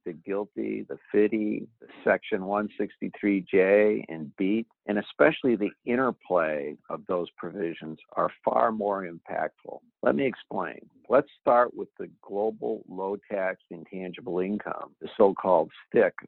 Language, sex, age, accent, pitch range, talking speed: English, male, 50-69, American, 95-120 Hz, 120 wpm